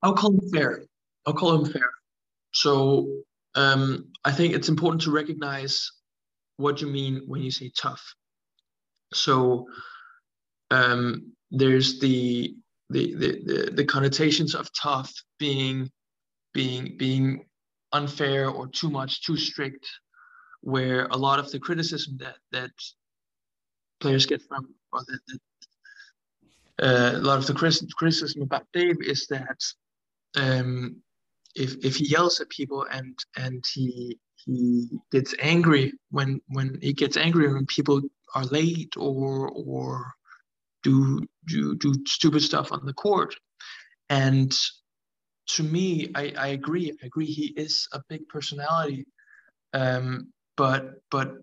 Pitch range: 135-155 Hz